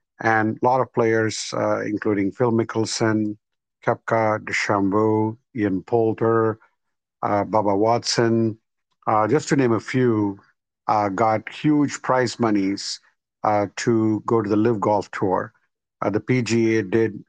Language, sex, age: English, male, 50-69